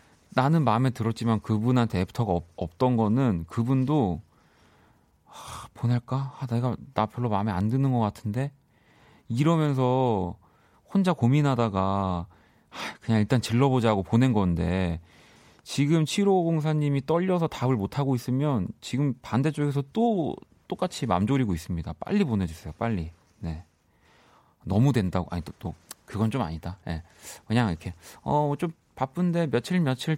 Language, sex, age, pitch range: Korean, male, 30-49, 95-135 Hz